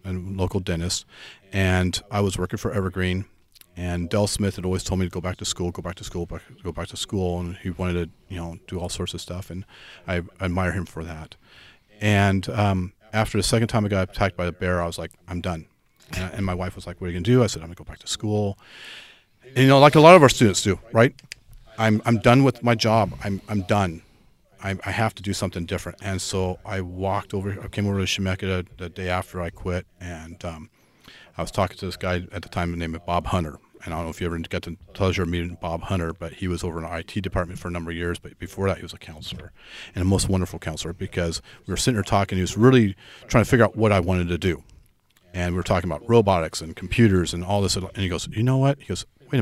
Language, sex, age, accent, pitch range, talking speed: English, male, 40-59, American, 90-105 Hz, 260 wpm